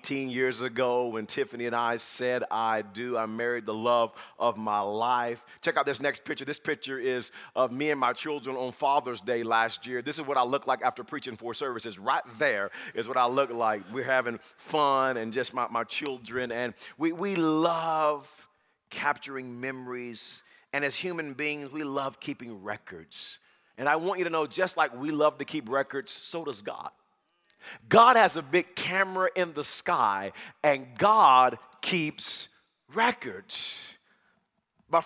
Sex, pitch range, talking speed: male, 125-170 Hz, 175 wpm